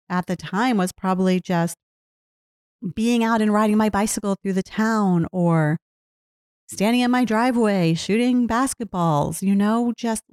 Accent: American